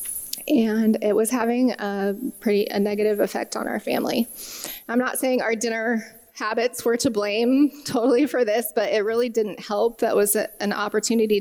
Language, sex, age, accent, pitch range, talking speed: English, female, 20-39, American, 215-245 Hz, 170 wpm